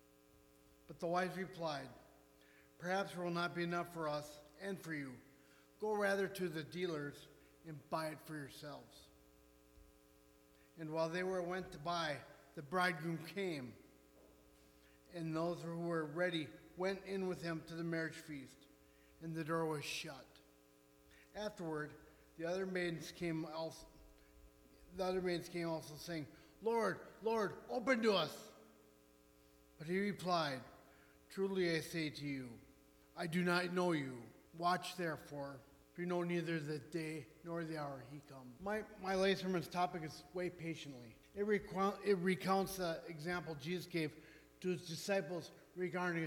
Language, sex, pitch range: English, male, 140-180 Hz